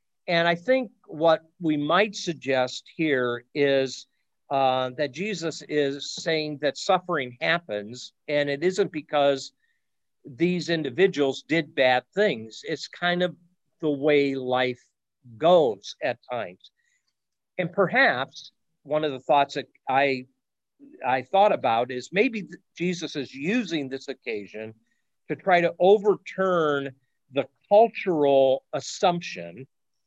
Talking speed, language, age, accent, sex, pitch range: 120 wpm, English, 50-69, American, male, 130-175 Hz